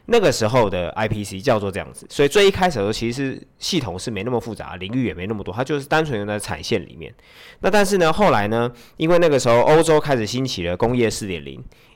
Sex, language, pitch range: male, Chinese, 100-135 Hz